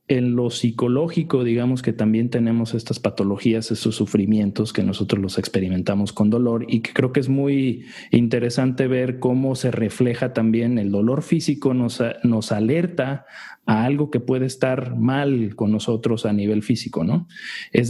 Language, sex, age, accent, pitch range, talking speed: Spanish, male, 40-59, Mexican, 110-130 Hz, 160 wpm